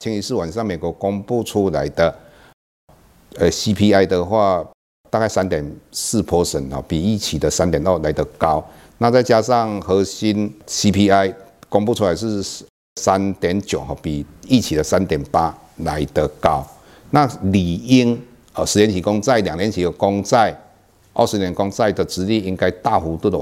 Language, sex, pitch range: Chinese, male, 90-115 Hz